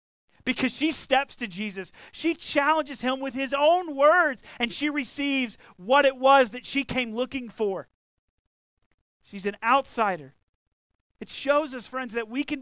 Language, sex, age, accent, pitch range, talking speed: English, male, 40-59, American, 200-265 Hz, 155 wpm